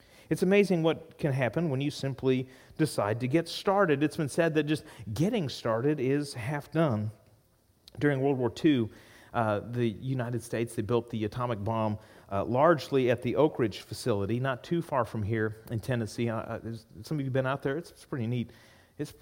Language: English